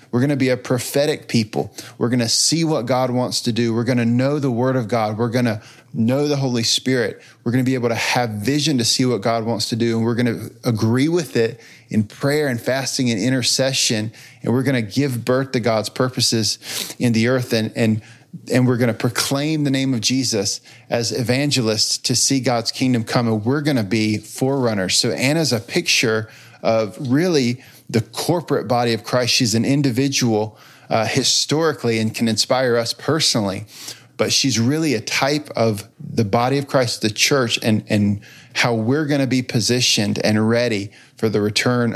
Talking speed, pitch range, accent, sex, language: 185 wpm, 115-130 Hz, American, male, English